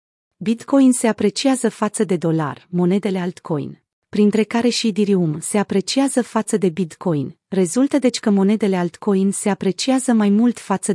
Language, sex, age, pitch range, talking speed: Romanian, female, 30-49, 180-235 Hz, 150 wpm